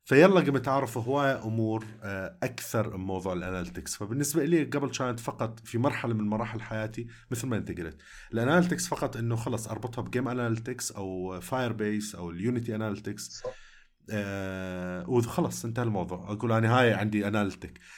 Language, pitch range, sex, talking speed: Arabic, 95-125 Hz, male, 150 wpm